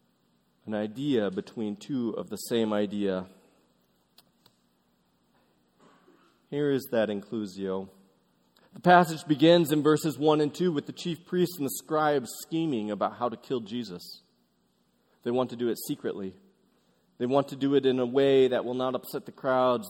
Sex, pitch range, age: male, 90-145 Hz, 30-49